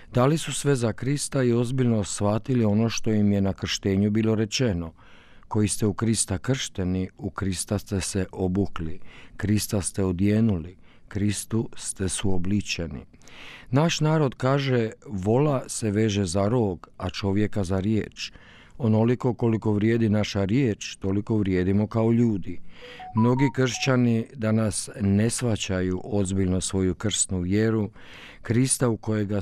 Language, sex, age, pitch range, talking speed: Croatian, male, 50-69, 100-120 Hz, 135 wpm